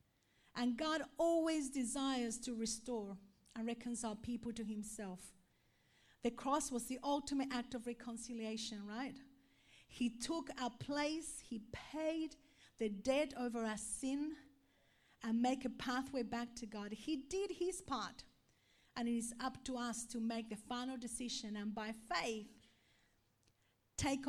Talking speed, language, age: 140 wpm, English, 50-69